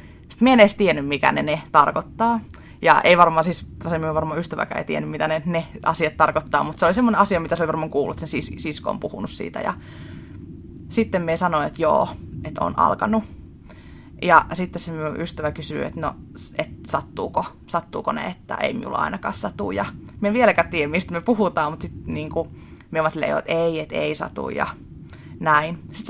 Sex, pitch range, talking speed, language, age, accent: female, 155-185 Hz, 195 wpm, Finnish, 20-39, native